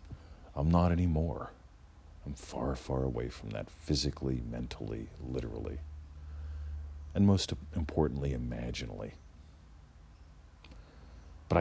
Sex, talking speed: male, 90 wpm